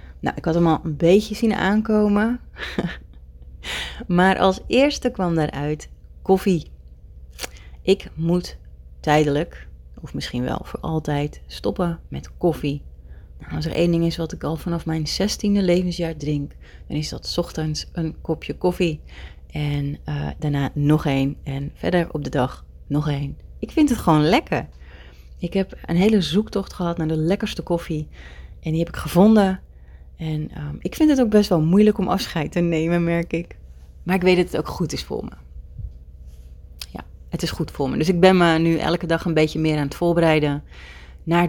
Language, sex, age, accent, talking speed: Dutch, female, 30-49, Dutch, 180 wpm